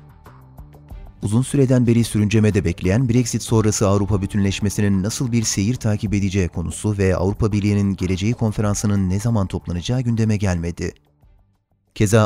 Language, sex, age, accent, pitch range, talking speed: Turkish, male, 30-49, native, 95-120 Hz, 125 wpm